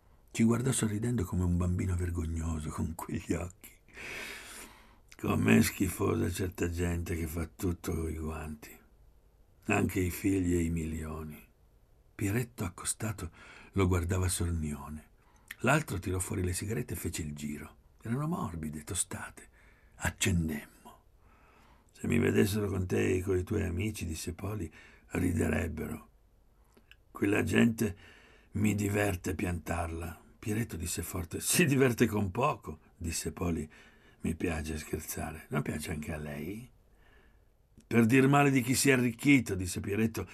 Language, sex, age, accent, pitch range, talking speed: Italian, male, 60-79, native, 80-110 Hz, 135 wpm